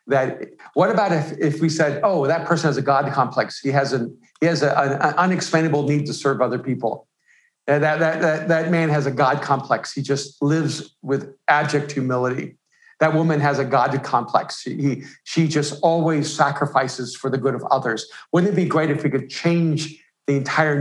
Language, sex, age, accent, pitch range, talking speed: English, male, 50-69, American, 135-160 Hz, 200 wpm